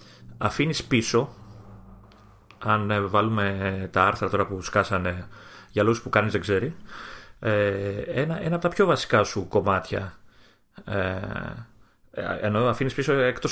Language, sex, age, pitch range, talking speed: Greek, male, 30-49, 100-130 Hz, 120 wpm